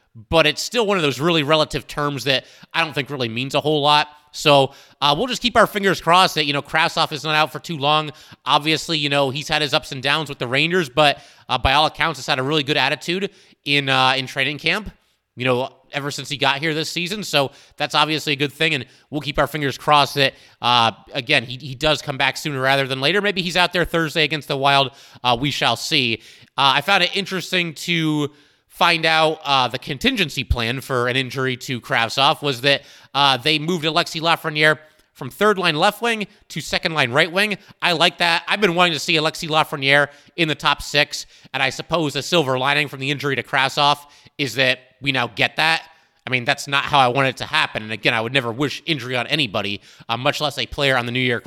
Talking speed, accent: 235 wpm, American